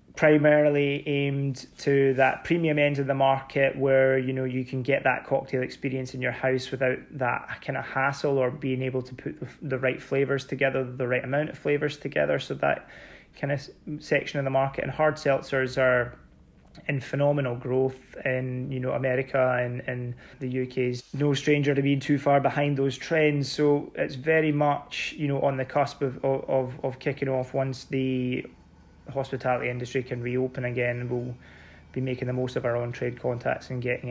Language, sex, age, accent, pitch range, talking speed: English, male, 20-39, British, 125-140 Hz, 185 wpm